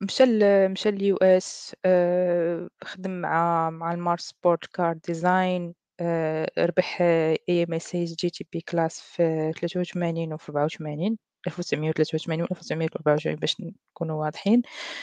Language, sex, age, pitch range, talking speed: Arabic, female, 20-39, 165-190 Hz, 100 wpm